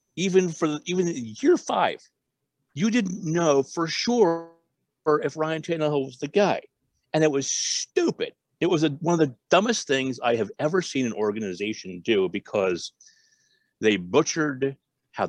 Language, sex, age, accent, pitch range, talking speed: English, male, 50-69, American, 130-185 Hz, 155 wpm